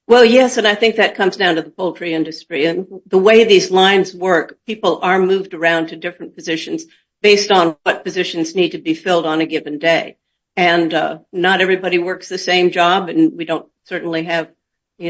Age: 50-69